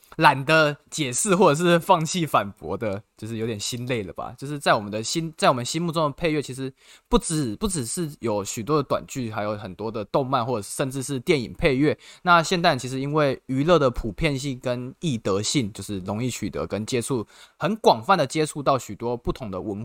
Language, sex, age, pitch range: Chinese, male, 20-39, 115-155 Hz